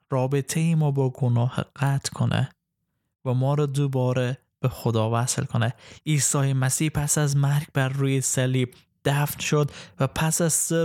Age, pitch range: 20-39, 130-155 Hz